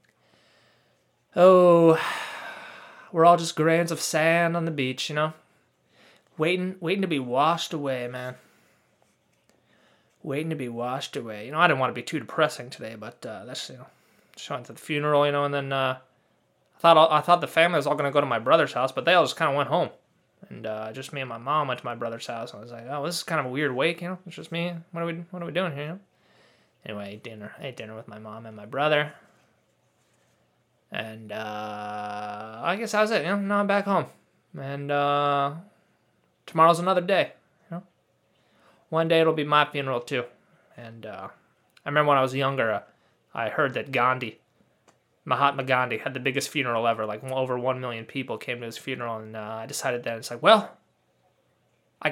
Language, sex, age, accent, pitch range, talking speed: English, male, 20-39, American, 125-165 Hz, 220 wpm